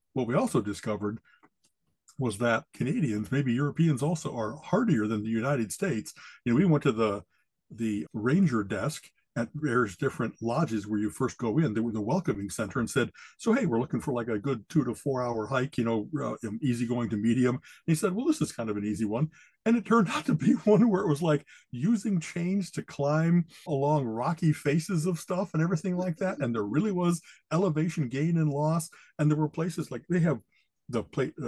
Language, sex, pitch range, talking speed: English, male, 115-160 Hz, 215 wpm